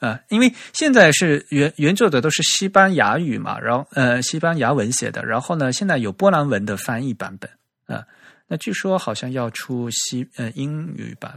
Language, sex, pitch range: Chinese, male, 110-150 Hz